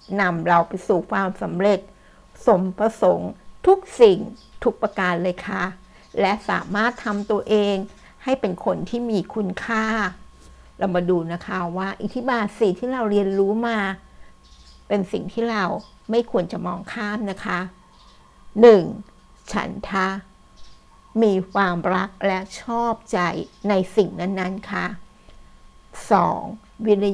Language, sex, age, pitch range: Thai, female, 60-79, 185-215 Hz